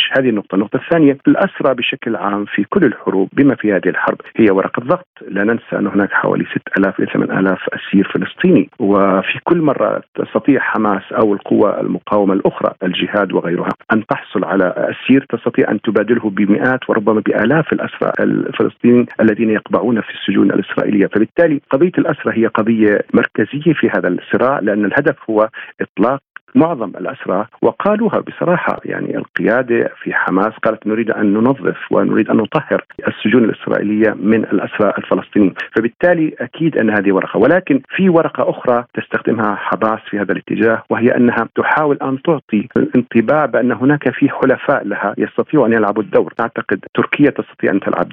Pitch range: 105-140 Hz